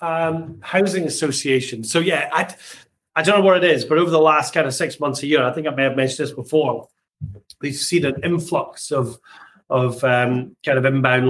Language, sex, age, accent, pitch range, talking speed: English, male, 30-49, British, 125-145 Hz, 210 wpm